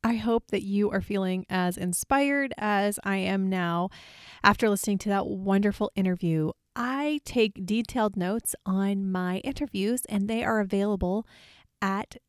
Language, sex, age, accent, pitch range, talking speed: English, female, 30-49, American, 185-225 Hz, 145 wpm